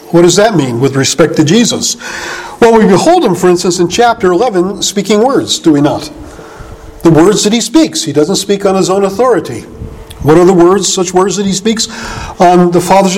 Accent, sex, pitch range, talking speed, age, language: American, male, 180-255 Hz, 210 wpm, 50-69, English